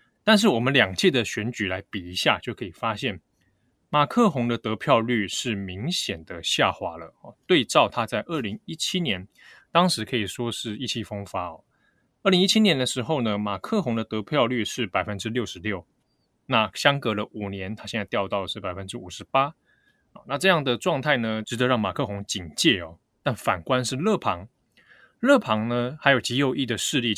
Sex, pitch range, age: male, 100-140 Hz, 20-39